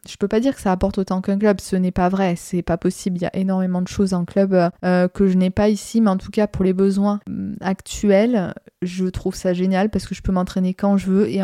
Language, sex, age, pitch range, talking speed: French, female, 20-39, 180-205 Hz, 275 wpm